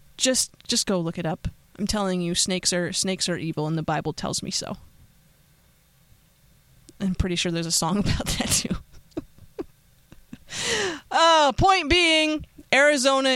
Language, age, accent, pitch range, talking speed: English, 20-39, American, 185-235 Hz, 150 wpm